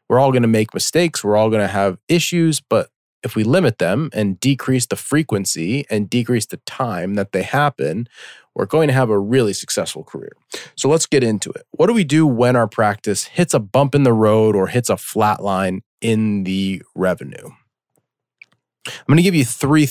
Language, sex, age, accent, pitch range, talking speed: English, male, 30-49, American, 105-140 Hz, 205 wpm